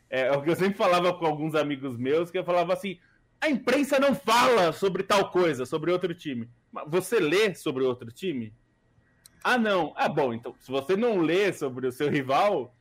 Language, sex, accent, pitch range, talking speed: Portuguese, male, Brazilian, 130-190 Hz, 200 wpm